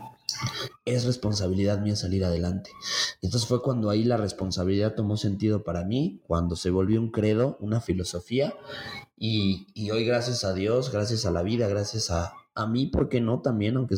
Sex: male